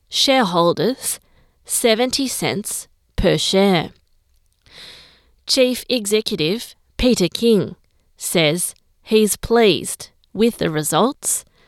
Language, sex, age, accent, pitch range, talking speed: English, female, 30-49, Australian, 180-230 Hz, 70 wpm